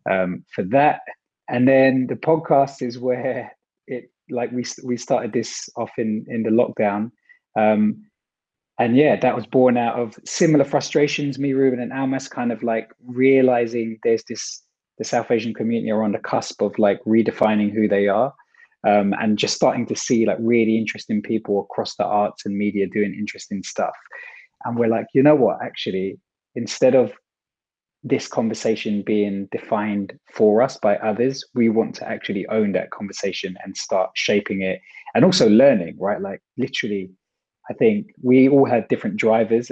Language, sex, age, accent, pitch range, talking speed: English, male, 20-39, British, 105-125 Hz, 170 wpm